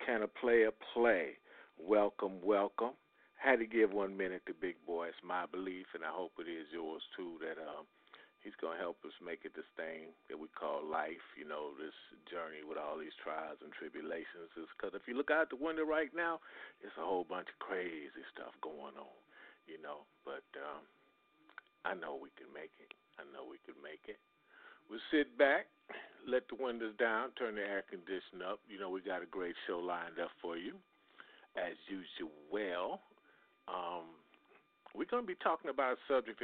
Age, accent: 50-69, American